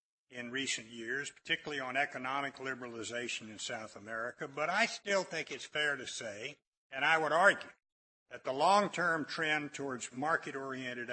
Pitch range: 120-155 Hz